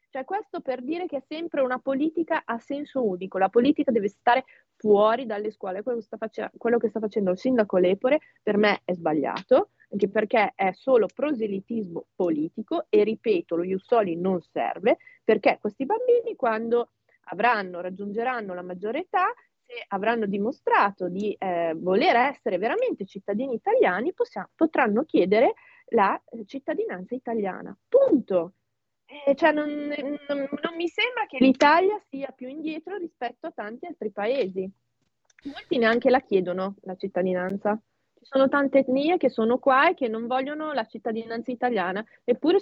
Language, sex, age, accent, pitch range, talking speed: Italian, female, 30-49, native, 205-285 Hz, 150 wpm